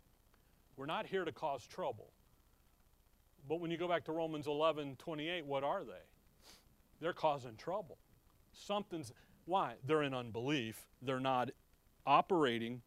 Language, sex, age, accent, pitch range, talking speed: English, male, 40-59, American, 145-195 Hz, 130 wpm